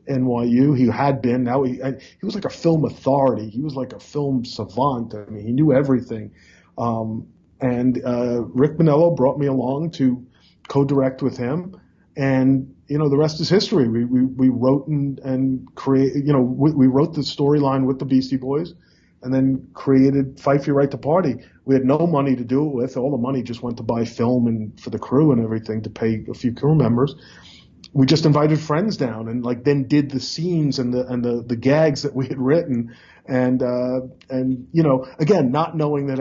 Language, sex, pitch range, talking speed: English, male, 125-145 Hz, 210 wpm